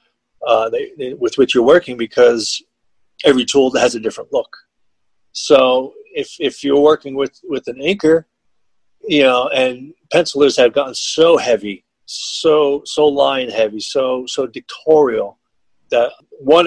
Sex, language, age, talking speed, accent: male, English, 40-59, 145 wpm, American